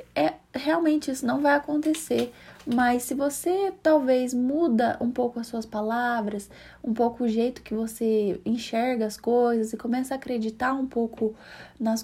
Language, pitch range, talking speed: Portuguese, 205-270 Hz, 155 wpm